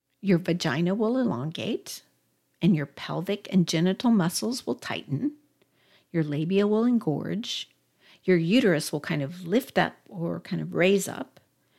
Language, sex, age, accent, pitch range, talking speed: English, female, 50-69, American, 160-200 Hz, 145 wpm